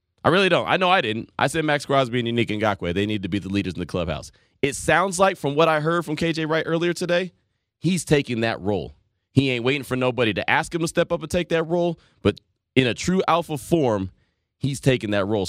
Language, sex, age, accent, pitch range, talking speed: English, male, 20-39, American, 105-140 Hz, 250 wpm